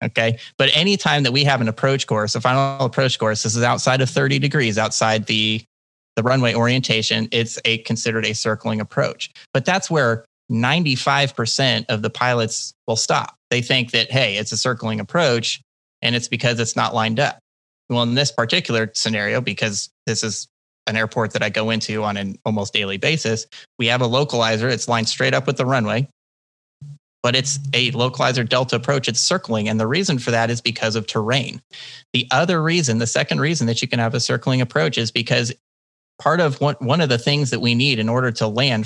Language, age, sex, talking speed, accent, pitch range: English, 30-49, male, 200 wpm, American, 110-130 Hz